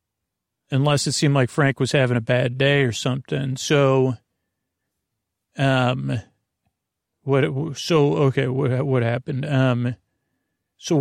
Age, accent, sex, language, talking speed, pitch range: 40-59, American, male, English, 125 wpm, 130-165 Hz